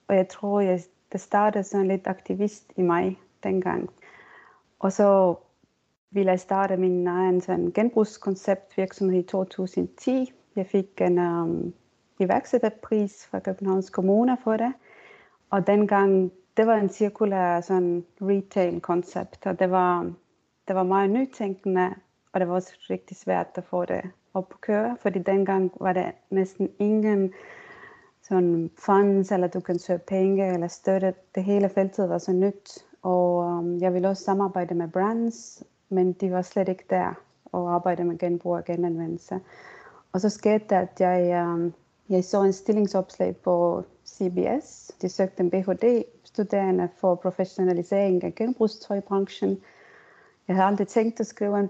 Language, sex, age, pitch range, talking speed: Danish, female, 30-49, 180-200 Hz, 145 wpm